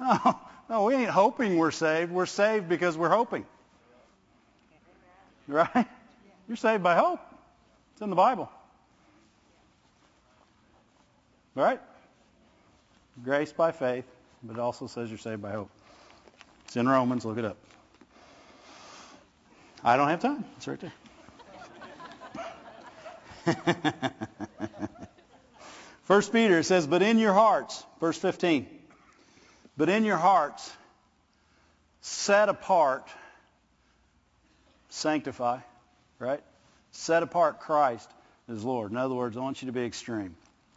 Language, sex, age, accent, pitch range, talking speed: English, male, 50-69, American, 120-175 Hz, 115 wpm